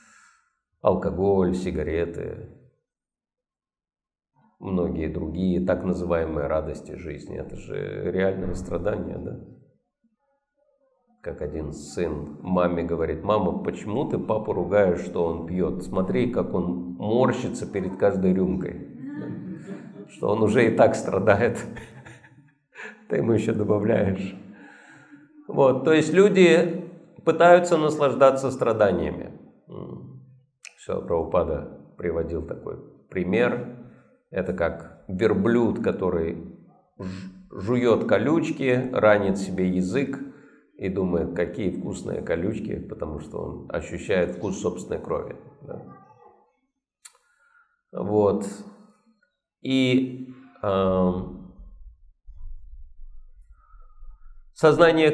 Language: Russian